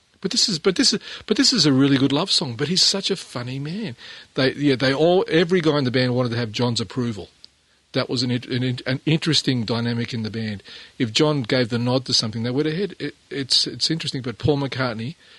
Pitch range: 115-150 Hz